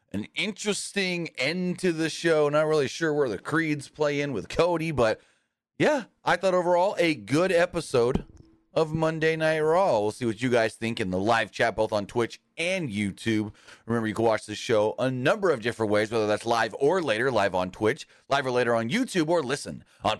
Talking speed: 210 wpm